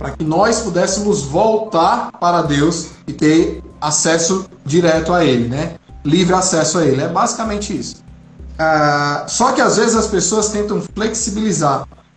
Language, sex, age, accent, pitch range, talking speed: Portuguese, male, 20-39, Brazilian, 150-200 Hz, 150 wpm